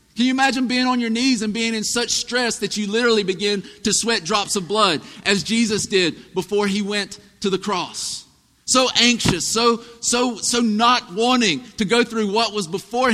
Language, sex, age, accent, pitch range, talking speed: English, male, 50-69, American, 205-250 Hz, 195 wpm